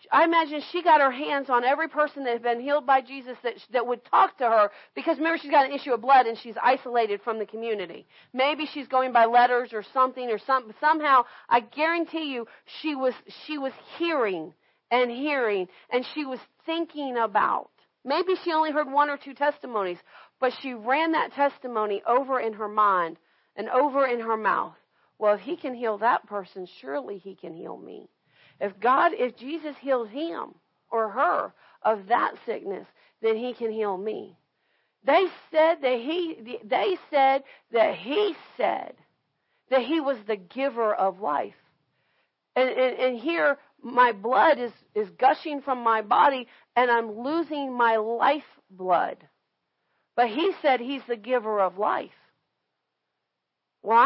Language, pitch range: English, 230-295 Hz